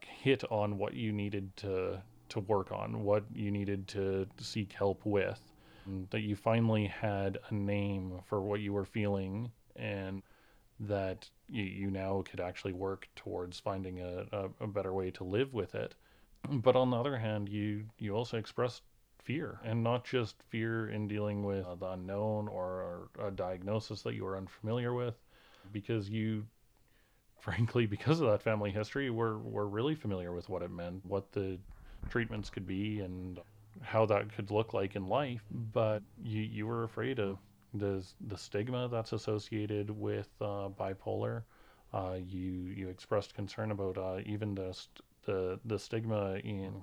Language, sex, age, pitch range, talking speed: English, male, 30-49, 95-110 Hz, 165 wpm